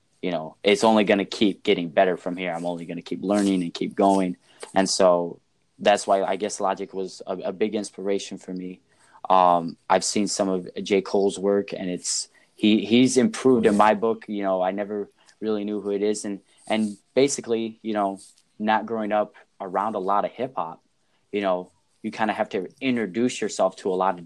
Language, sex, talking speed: English, male, 210 wpm